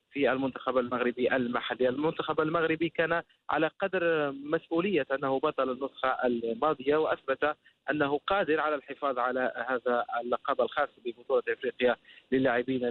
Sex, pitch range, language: male, 135-160 Hz, Arabic